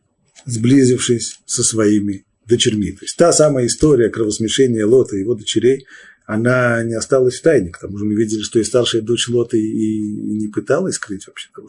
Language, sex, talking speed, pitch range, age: Russian, male, 180 wpm, 110-135 Hz, 40-59